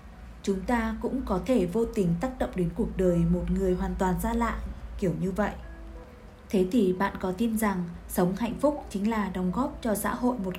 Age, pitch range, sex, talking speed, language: 20-39, 180-225 Hz, female, 215 wpm, Vietnamese